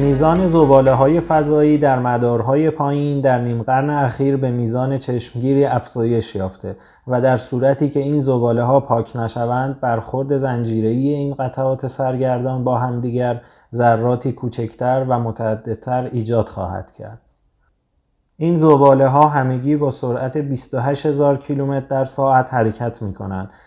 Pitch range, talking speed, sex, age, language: 115-135 Hz, 130 wpm, male, 30-49, Persian